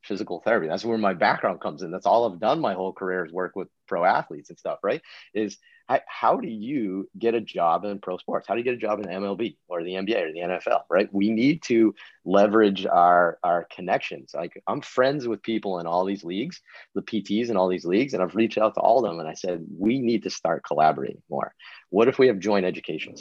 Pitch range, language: 90-110 Hz, English